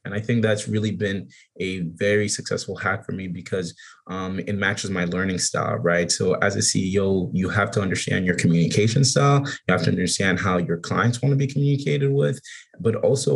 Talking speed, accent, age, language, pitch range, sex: 200 wpm, American, 20-39, English, 90-115 Hz, male